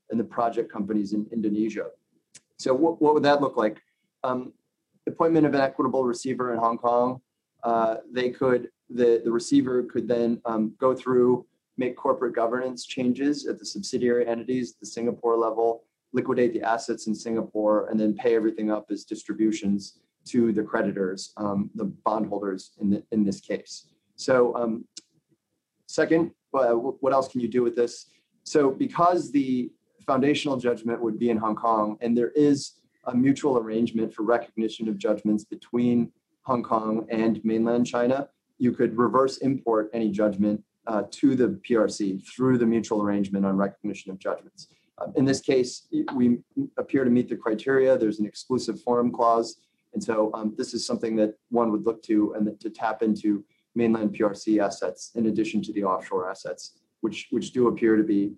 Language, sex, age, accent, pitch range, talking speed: English, male, 30-49, American, 110-130 Hz, 170 wpm